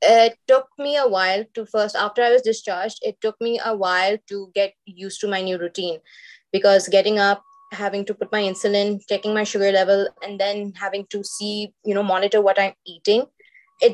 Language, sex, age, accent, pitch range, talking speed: English, female, 20-39, Indian, 195-230 Hz, 200 wpm